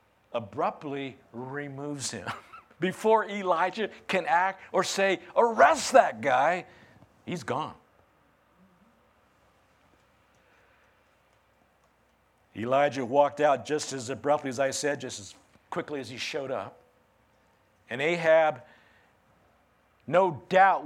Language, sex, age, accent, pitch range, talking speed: English, male, 50-69, American, 135-170 Hz, 100 wpm